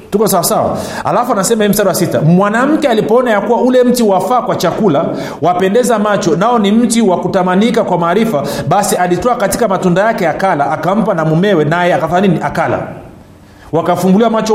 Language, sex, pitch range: Swahili, male, 160-210 Hz